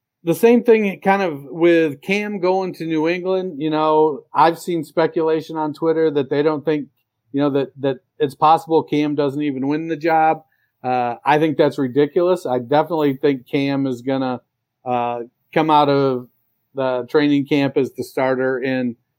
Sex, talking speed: male, 180 wpm